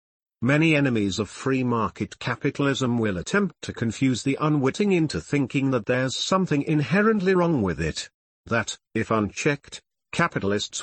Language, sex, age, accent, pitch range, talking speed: English, male, 50-69, British, 110-140 Hz, 140 wpm